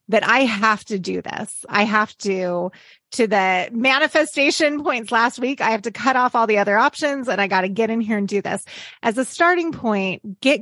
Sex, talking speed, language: female, 220 wpm, English